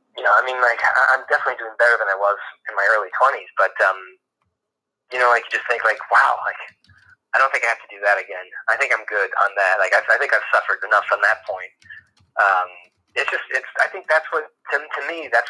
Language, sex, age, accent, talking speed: English, male, 30-49, American, 250 wpm